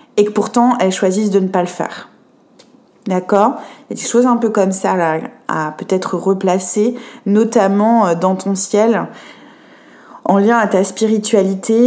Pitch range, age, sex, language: 190-230 Hz, 20-39, female, French